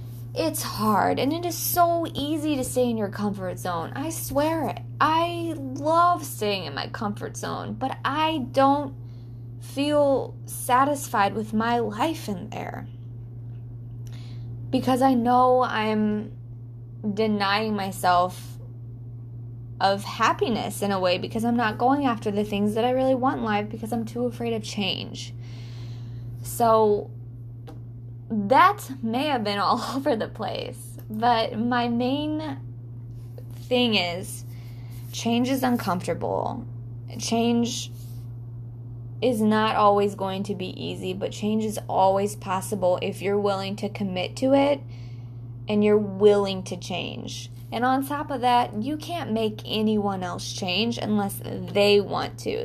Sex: female